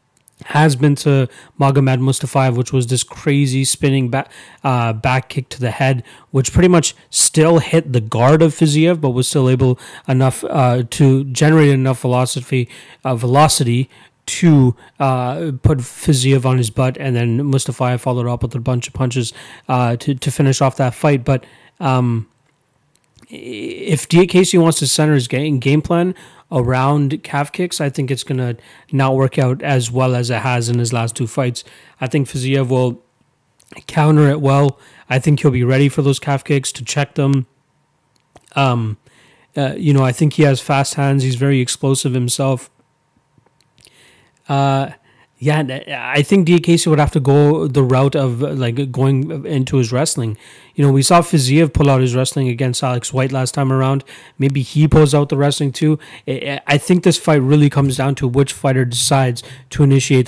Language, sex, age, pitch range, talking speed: English, male, 30-49, 130-145 Hz, 180 wpm